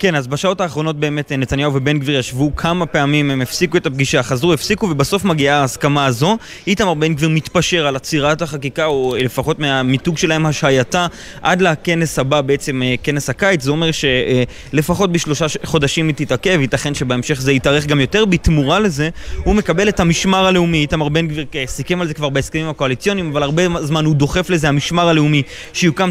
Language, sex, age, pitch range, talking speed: Hebrew, male, 20-39, 145-180 Hz, 160 wpm